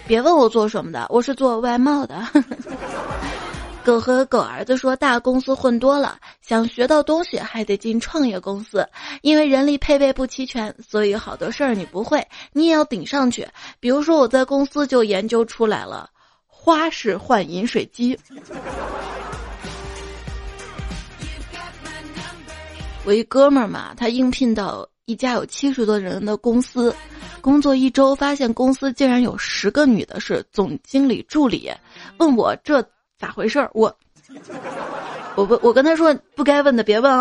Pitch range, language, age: 225-275 Hz, Chinese, 20-39